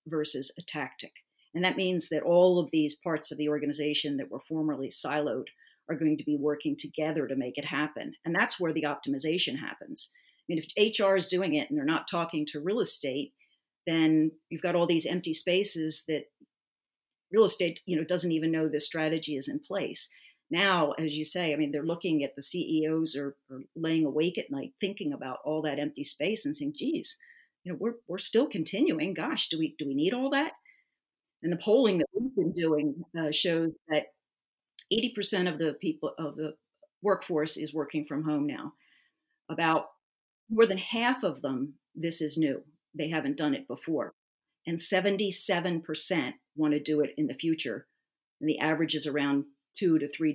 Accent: American